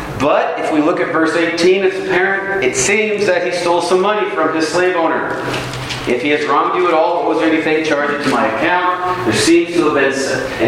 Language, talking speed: English, 230 wpm